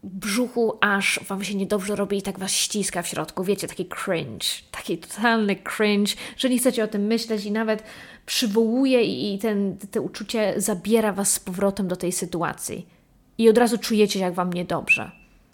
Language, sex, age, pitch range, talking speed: Polish, female, 20-39, 195-245 Hz, 175 wpm